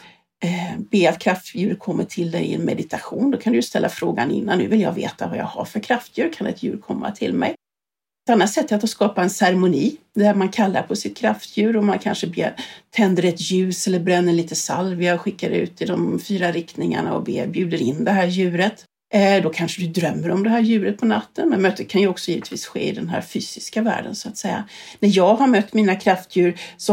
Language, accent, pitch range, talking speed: English, Swedish, 180-215 Hz, 220 wpm